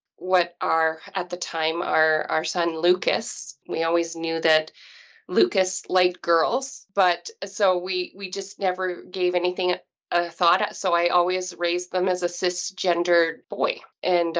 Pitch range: 175-195 Hz